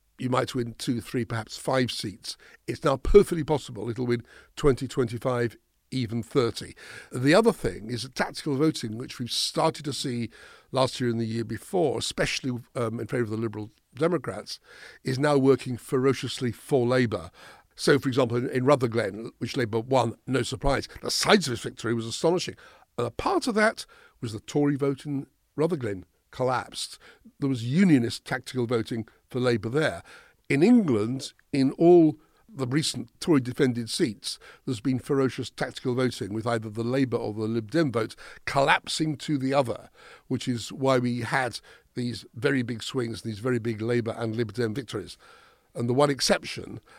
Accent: British